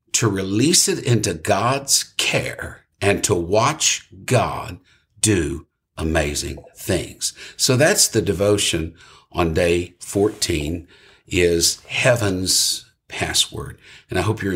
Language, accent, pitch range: English, American, 85-120 Hz